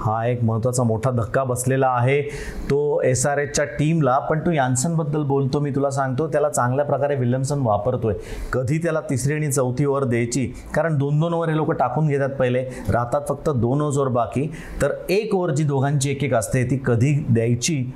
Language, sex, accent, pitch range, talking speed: Marathi, male, native, 125-155 Hz, 75 wpm